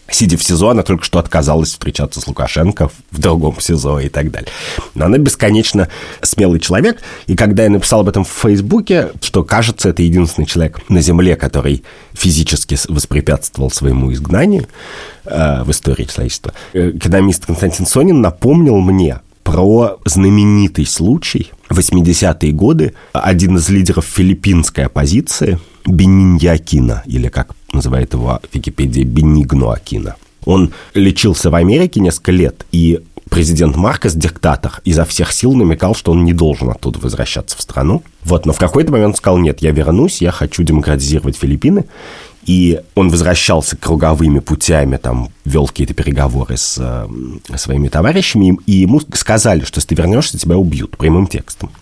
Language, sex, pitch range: Russian, male, 75-95 Hz